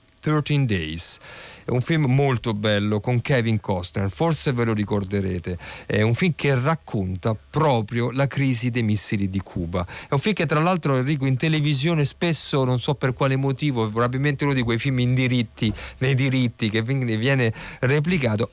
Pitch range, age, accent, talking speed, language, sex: 110-150 Hz, 40-59, native, 170 wpm, Italian, male